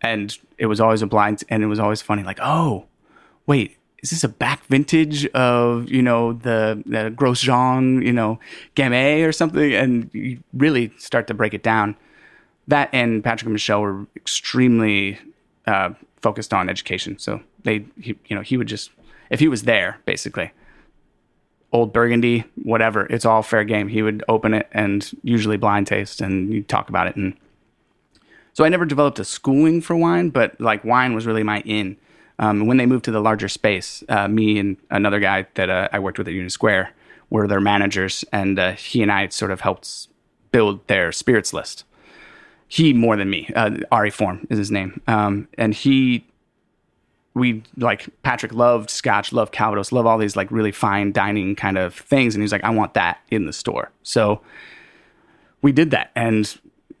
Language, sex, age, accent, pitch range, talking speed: English, male, 30-49, American, 105-125 Hz, 190 wpm